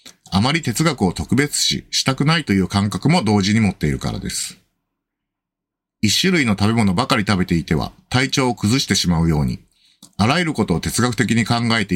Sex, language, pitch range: male, Japanese, 90-125 Hz